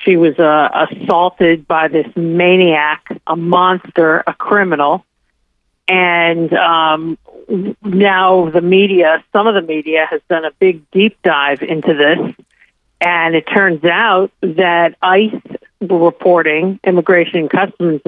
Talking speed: 125 wpm